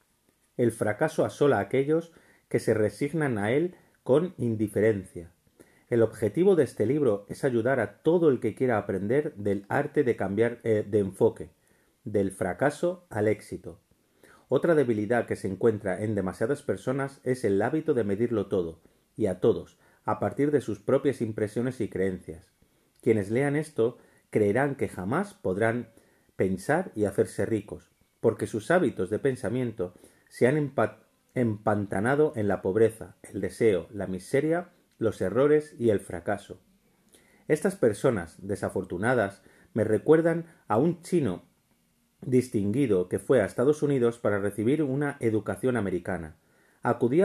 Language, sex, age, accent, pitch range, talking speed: Spanish, male, 40-59, Spanish, 100-135 Hz, 145 wpm